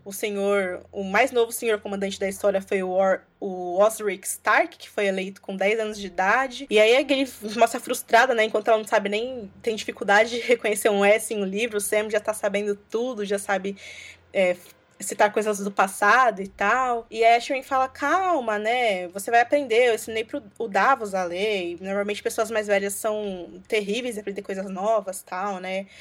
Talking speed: 200 wpm